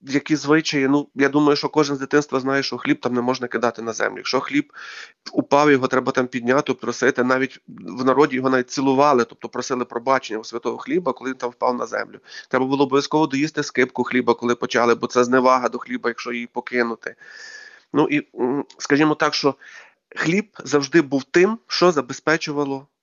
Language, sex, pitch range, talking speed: Ukrainian, male, 130-160 Hz, 185 wpm